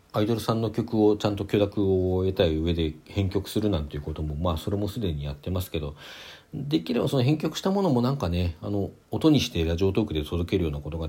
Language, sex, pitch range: Japanese, male, 80-110 Hz